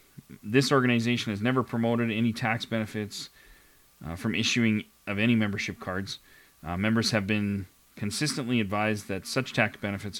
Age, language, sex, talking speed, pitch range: 30-49, English, male, 145 wpm, 100-120 Hz